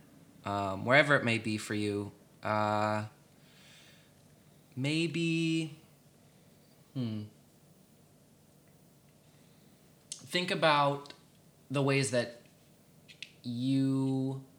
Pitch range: 115-140 Hz